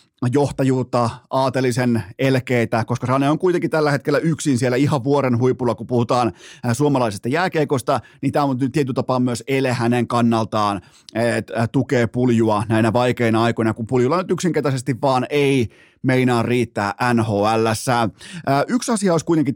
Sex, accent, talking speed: male, native, 140 wpm